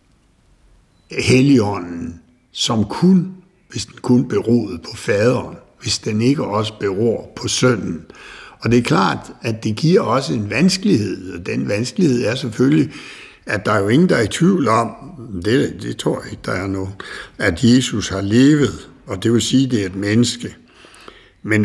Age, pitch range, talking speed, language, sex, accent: 60-79, 100-135 Hz, 175 wpm, Danish, male, native